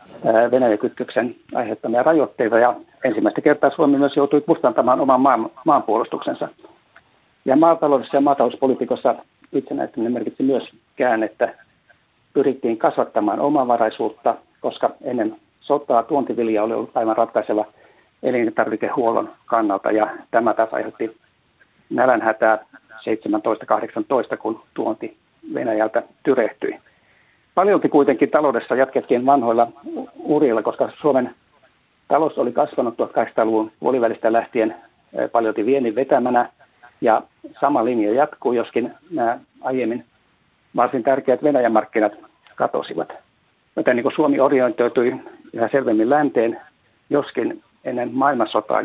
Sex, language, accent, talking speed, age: male, Finnish, native, 105 wpm, 60-79